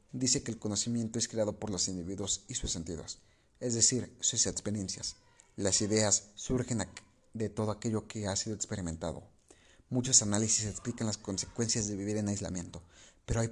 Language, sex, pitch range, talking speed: Spanish, male, 105-130 Hz, 165 wpm